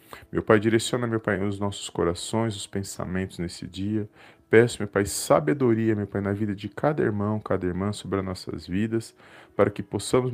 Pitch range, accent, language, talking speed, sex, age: 95-110 Hz, Brazilian, Portuguese, 185 wpm, male, 20-39